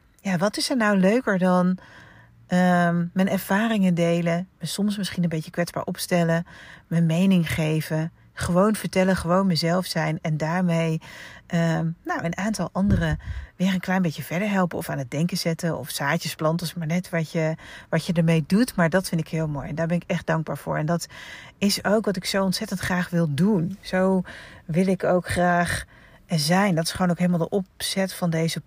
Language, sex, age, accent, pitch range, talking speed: Dutch, female, 40-59, Dutch, 165-195 Hz, 190 wpm